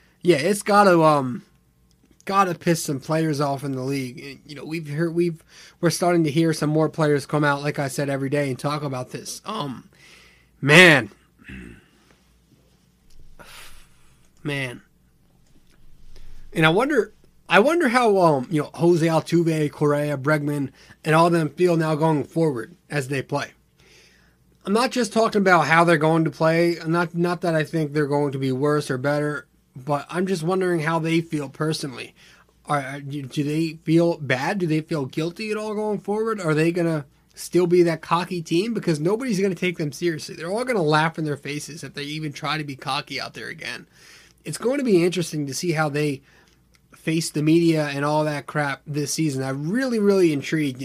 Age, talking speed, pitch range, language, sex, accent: 30-49, 190 wpm, 145-170 Hz, English, male, American